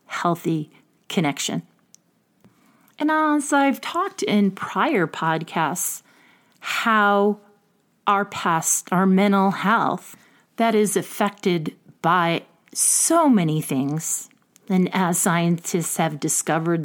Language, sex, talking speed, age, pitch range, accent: English, female, 95 wpm, 40-59, 170-235 Hz, American